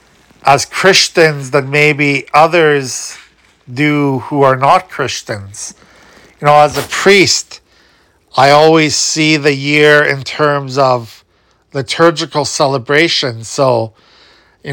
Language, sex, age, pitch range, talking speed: English, male, 50-69, 135-155 Hz, 110 wpm